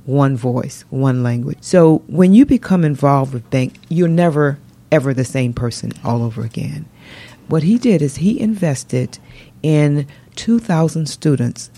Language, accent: English, American